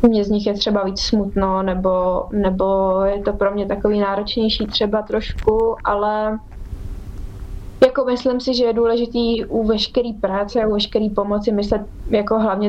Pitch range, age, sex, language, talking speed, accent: 200-240 Hz, 20-39, female, Czech, 160 wpm, native